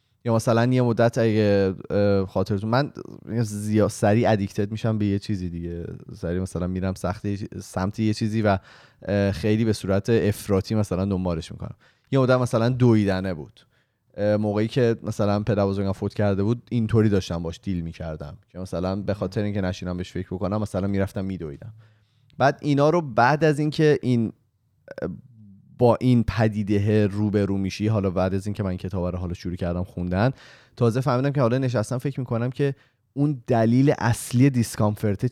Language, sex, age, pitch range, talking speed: Persian, male, 20-39, 95-115 Hz, 170 wpm